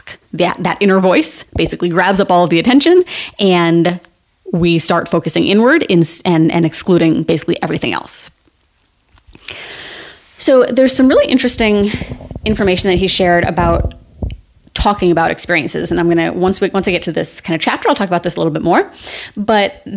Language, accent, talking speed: English, American, 175 wpm